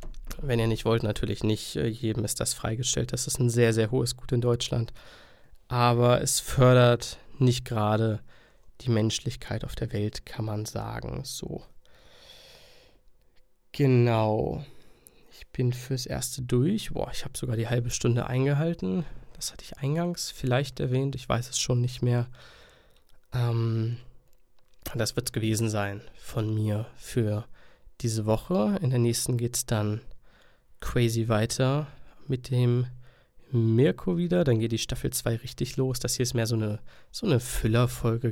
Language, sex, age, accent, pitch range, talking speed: German, male, 20-39, German, 115-130 Hz, 155 wpm